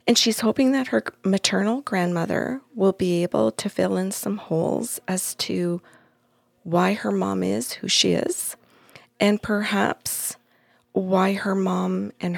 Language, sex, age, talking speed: English, female, 40-59, 145 wpm